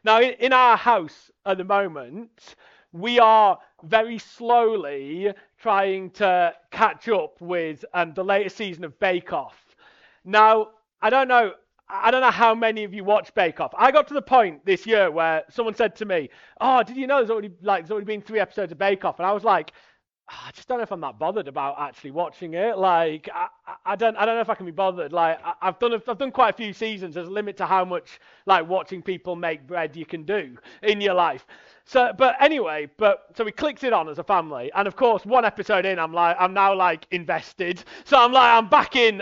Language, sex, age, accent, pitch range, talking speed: English, male, 40-59, British, 180-235 Hz, 225 wpm